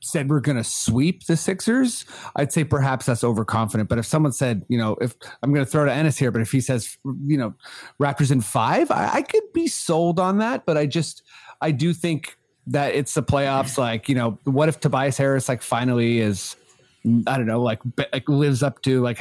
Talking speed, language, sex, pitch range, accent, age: 220 wpm, English, male, 120-150 Hz, American, 30-49